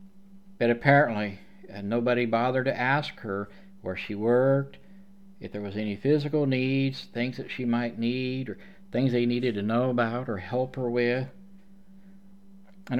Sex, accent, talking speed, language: male, American, 150 wpm, English